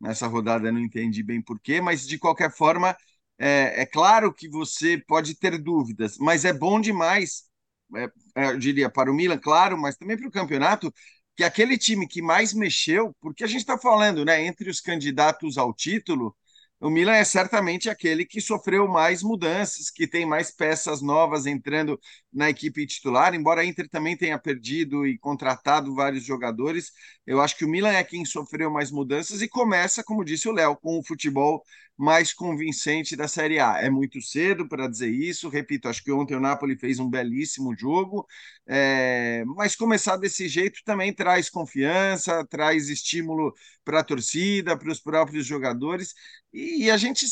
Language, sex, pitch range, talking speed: Portuguese, male, 140-185 Hz, 180 wpm